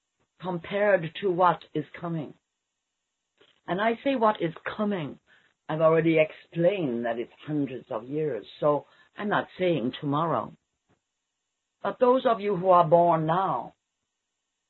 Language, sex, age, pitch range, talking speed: English, female, 50-69, 155-195 Hz, 130 wpm